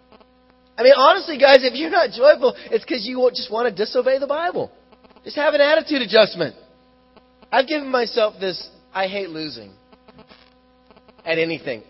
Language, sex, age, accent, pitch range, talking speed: English, male, 30-49, American, 170-255 Hz, 155 wpm